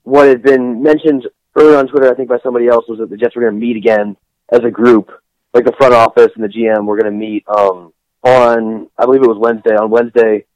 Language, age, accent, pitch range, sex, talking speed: English, 20-39, American, 105-140 Hz, male, 250 wpm